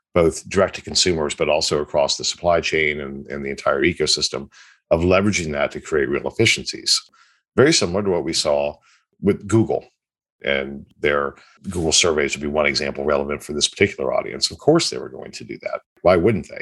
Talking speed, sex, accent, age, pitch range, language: 195 wpm, male, American, 50-69, 80-120 Hz, English